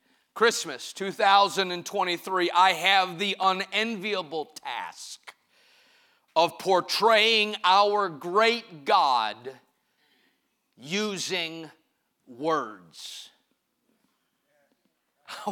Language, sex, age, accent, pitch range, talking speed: English, male, 40-59, American, 205-295 Hz, 60 wpm